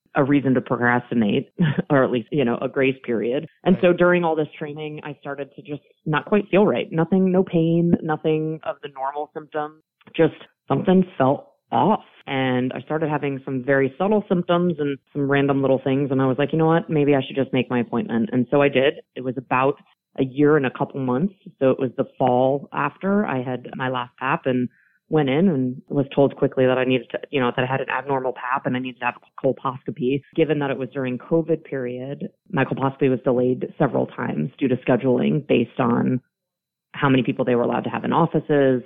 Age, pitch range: 30-49, 125-150 Hz